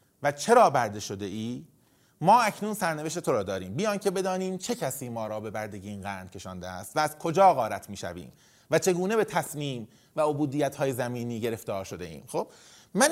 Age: 30-49